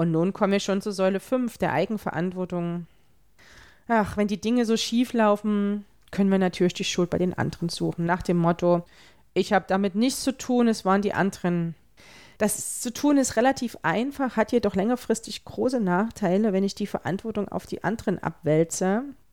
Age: 30-49